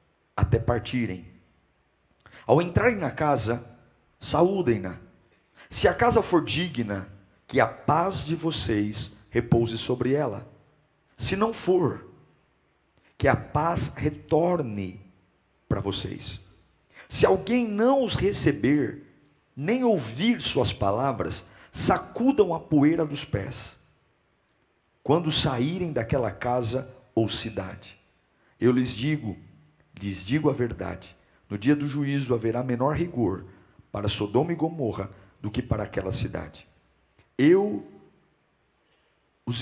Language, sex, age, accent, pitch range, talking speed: Portuguese, male, 50-69, Brazilian, 100-145 Hz, 110 wpm